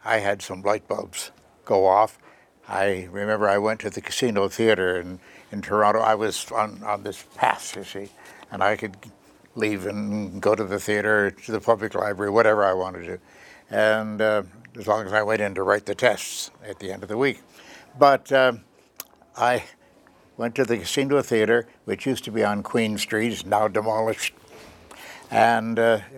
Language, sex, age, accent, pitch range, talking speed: English, male, 60-79, American, 100-120 Hz, 185 wpm